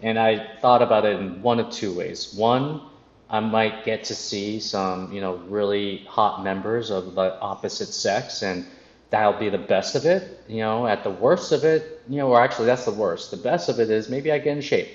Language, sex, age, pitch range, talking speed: English, male, 30-49, 100-125 Hz, 230 wpm